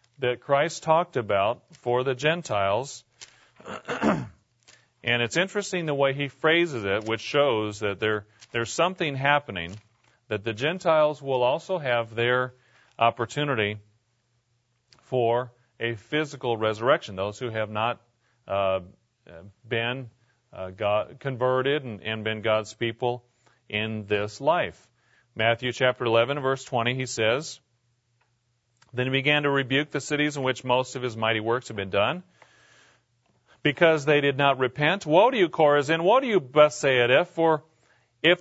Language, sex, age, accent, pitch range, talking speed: English, male, 40-59, American, 115-155 Hz, 140 wpm